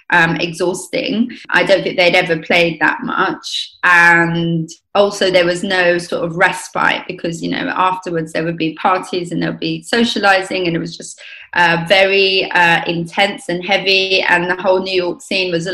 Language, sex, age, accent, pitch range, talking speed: English, female, 20-39, British, 175-190 Hz, 185 wpm